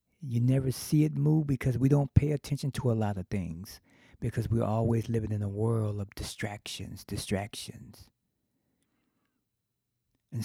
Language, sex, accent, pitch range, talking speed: English, male, American, 105-130 Hz, 150 wpm